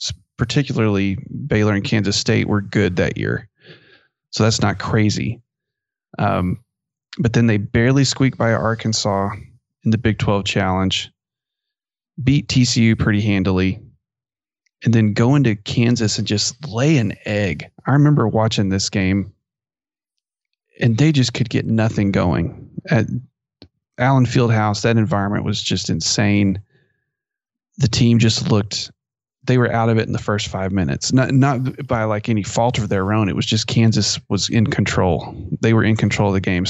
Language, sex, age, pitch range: English, male, 30-49, 105-130 Hz